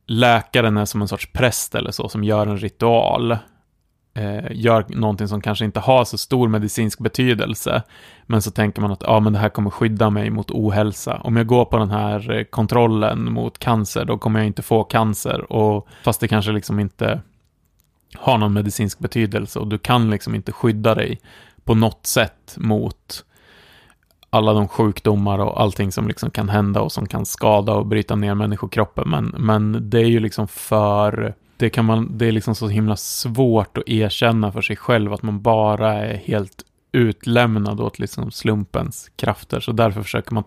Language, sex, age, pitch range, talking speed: Swedish, male, 30-49, 105-115 Hz, 185 wpm